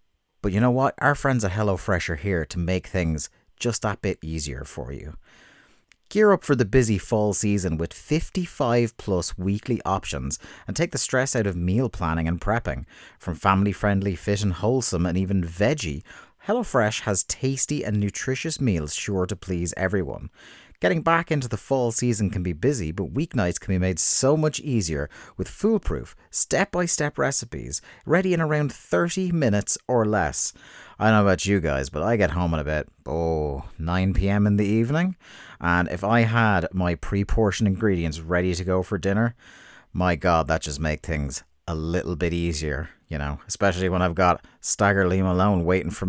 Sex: male